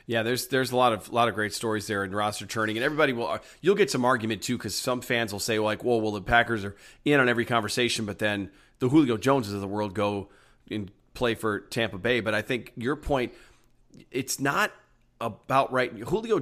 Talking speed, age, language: 225 wpm, 40-59, English